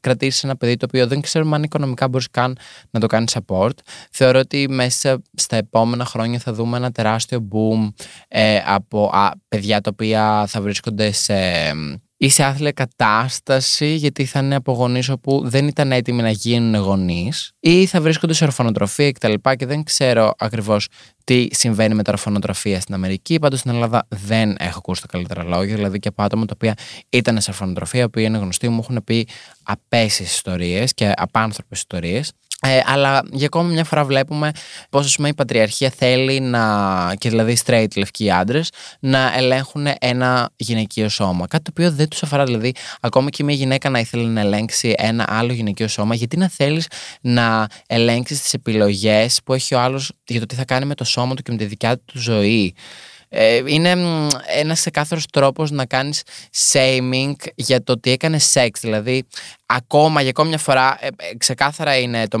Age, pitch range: 20-39, 110-140 Hz